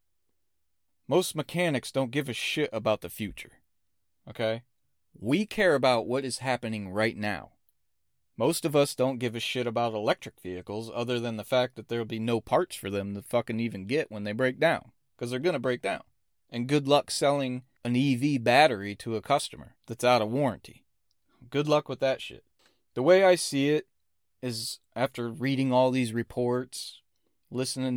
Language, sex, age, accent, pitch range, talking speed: English, male, 30-49, American, 95-130 Hz, 180 wpm